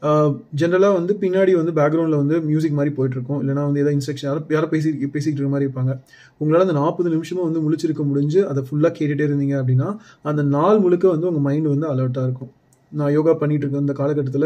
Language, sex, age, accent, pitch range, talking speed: Tamil, male, 30-49, native, 135-165 Hz, 195 wpm